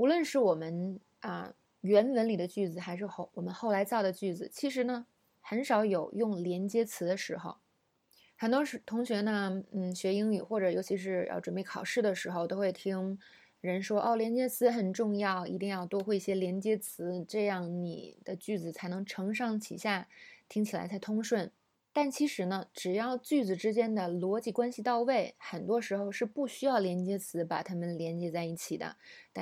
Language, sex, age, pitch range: Chinese, female, 20-39, 180-230 Hz